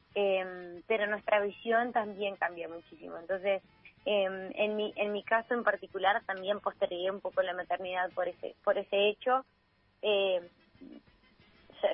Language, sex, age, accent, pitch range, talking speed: Spanish, female, 20-39, Argentinian, 195-225 Hz, 140 wpm